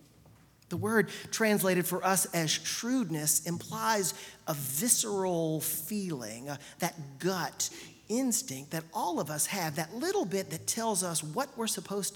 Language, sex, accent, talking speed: English, male, American, 140 wpm